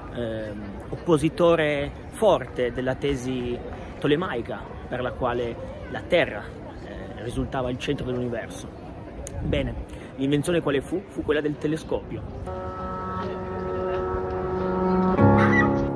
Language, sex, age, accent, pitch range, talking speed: Italian, male, 30-49, native, 110-145 Hz, 95 wpm